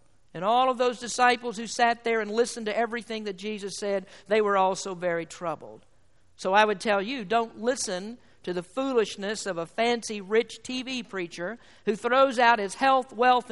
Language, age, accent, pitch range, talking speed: English, 50-69, American, 195-255 Hz, 185 wpm